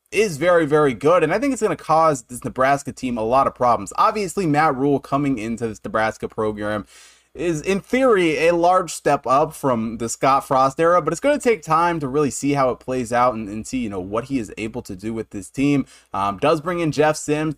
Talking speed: 240 wpm